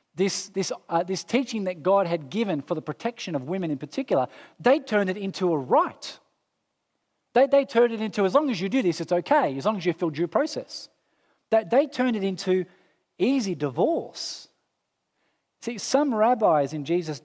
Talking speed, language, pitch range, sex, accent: 190 wpm, English, 160-270 Hz, male, Australian